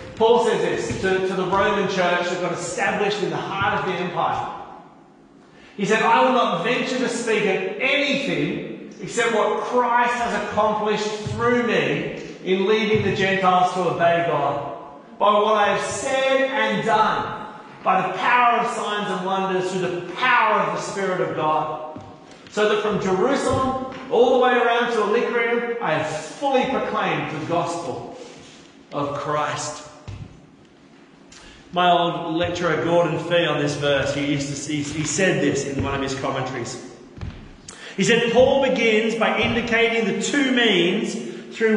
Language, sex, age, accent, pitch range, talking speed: English, male, 40-59, Australian, 170-230 Hz, 160 wpm